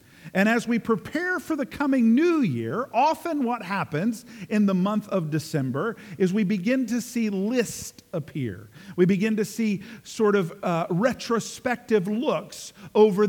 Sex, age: male, 50-69